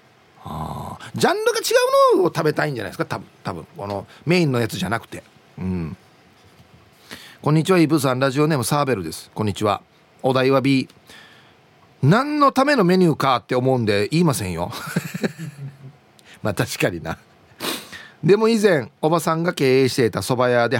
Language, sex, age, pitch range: Japanese, male, 40-59, 110-175 Hz